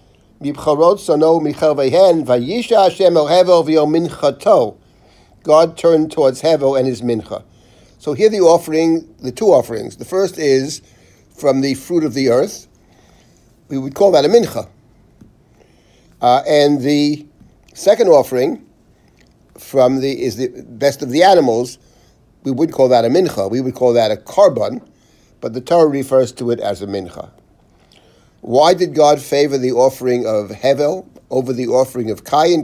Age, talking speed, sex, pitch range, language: 60-79, 140 wpm, male, 120-155 Hz, English